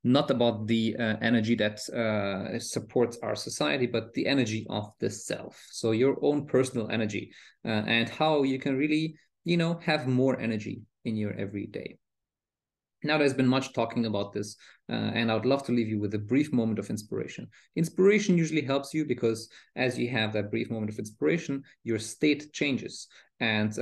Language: English